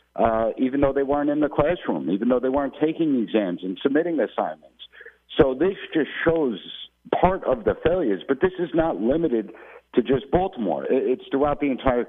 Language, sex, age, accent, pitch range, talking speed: English, male, 50-69, American, 120-155 Hz, 185 wpm